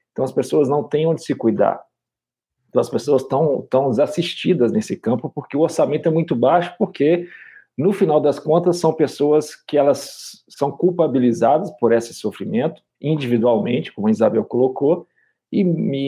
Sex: male